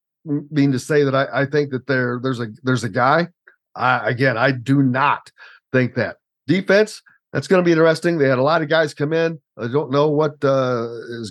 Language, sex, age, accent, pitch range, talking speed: English, male, 50-69, American, 130-165 Hz, 220 wpm